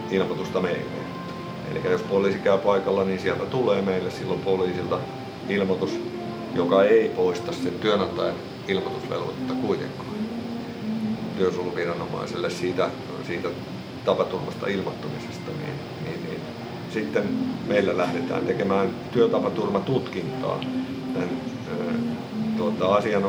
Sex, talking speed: male, 80 wpm